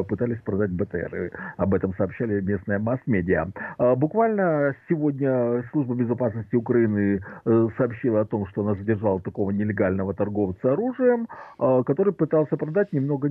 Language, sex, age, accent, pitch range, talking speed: Russian, male, 50-69, native, 105-150 Hz, 125 wpm